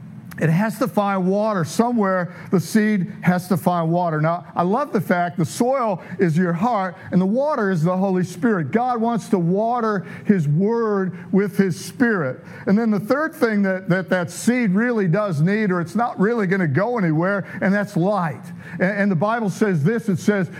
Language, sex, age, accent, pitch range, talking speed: English, male, 50-69, American, 170-210 Hz, 200 wpm